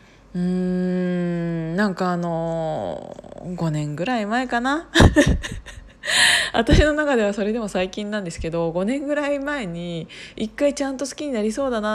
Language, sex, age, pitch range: Japanese, female, 20-39, 175-250 Hz